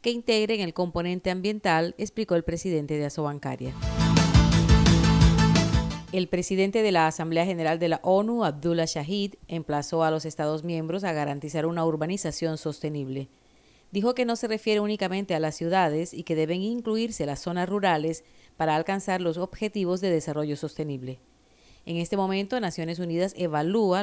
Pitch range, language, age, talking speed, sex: 155-190 Hz, Spanish, 40-59, 150 wpm, female